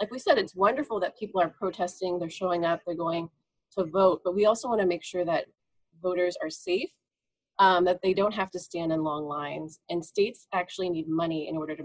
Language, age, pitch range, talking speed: English, 30-49, 160-195 Hz, 225 wpm